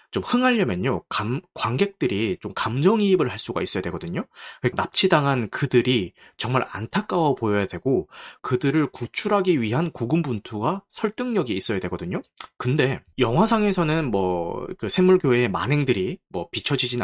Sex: male